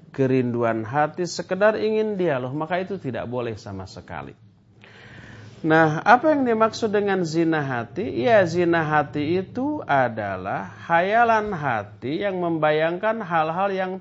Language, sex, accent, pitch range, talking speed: English, male, Indonesian, 110-180 Hz, 130 wpm